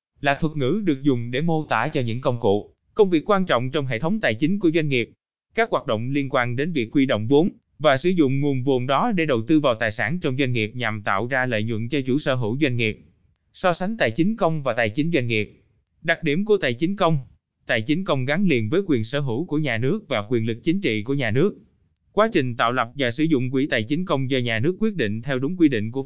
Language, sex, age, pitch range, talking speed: Vietnamese, male, 20-39, 120-170 Hz, 270 wpm